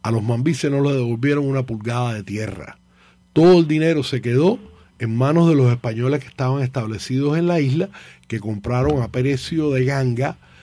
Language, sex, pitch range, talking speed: English, male, 120-160 Hz, 180 wpm